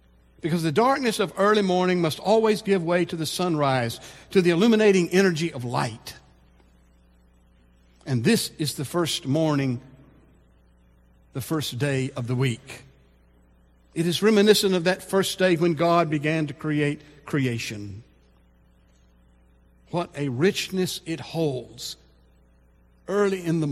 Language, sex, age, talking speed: English, male, 60-79, 130 wpm